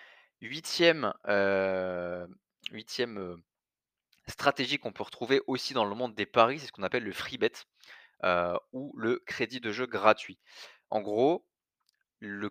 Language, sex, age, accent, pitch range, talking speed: French, male, 20-39, French, 100-135 Hz, 145 wpm